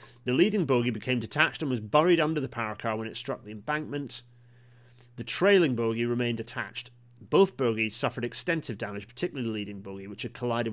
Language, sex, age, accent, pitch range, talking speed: English, male, 30-49, British, 110-125 Hz, 190 wpm